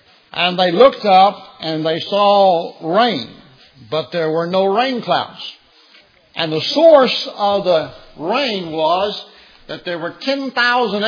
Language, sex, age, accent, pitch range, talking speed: English, male, 60-79, American, 165-225 Hz, 135 wpm